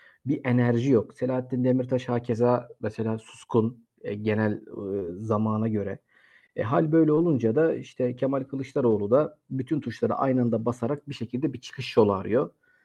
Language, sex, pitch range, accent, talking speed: Turkish, male, 115-135 Hz, native, 155 wpm